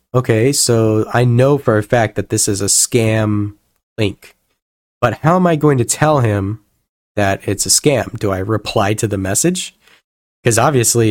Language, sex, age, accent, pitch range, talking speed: English, male, 20-39, American, 105-130 Hz, 180 wpm